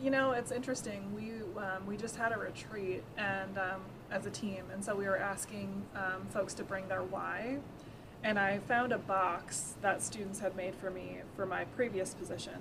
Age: 20-39